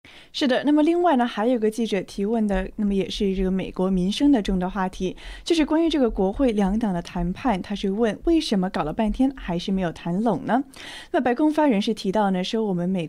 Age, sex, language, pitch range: 20-39, female, Chinese, 185-260 Hz